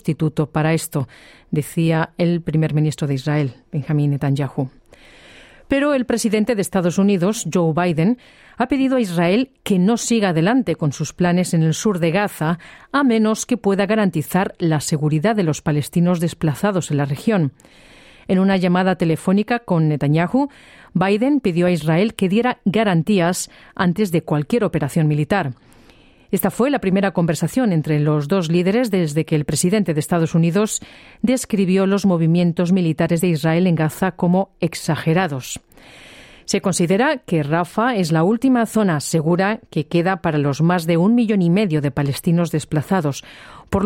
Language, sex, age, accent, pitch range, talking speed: Spanish, female, 40-59, Spanish, 160-205 Hz, 155 wpm